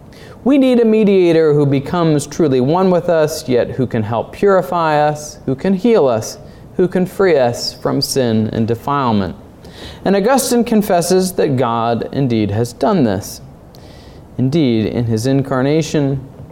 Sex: male